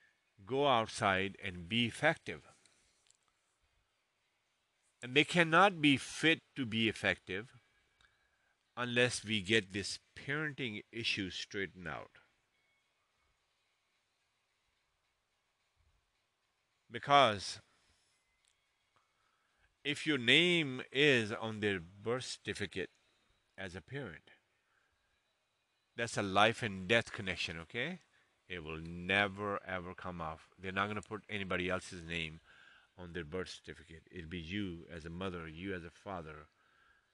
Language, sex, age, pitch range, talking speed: English, male, 50-69, 90-120 Hz, 110 wpm